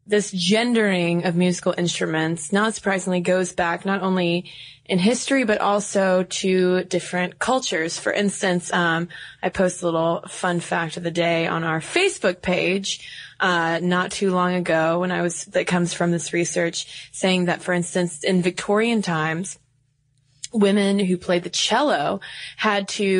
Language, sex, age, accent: English, female, 20-39, American